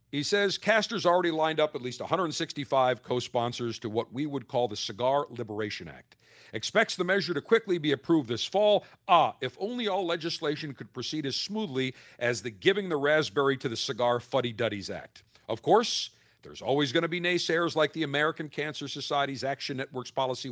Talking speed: 185 wpm